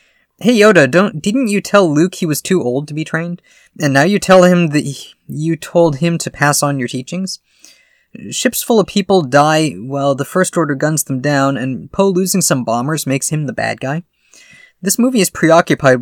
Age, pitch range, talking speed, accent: 20-39, 130-180 Hz, 205 wpm, American